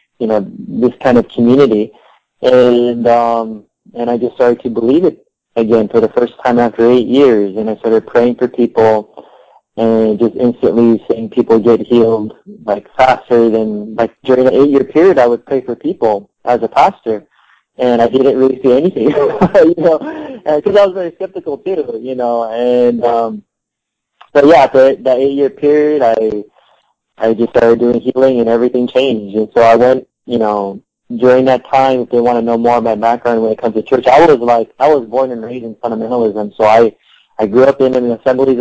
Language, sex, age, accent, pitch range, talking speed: English, male, 20-39, American, 115-130 Hz, 195 wpm